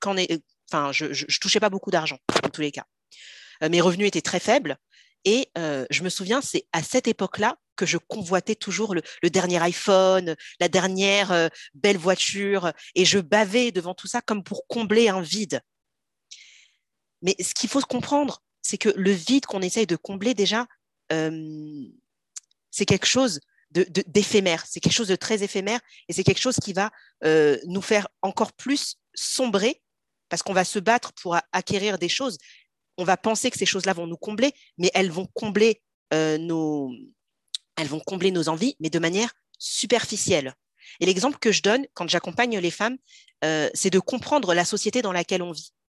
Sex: female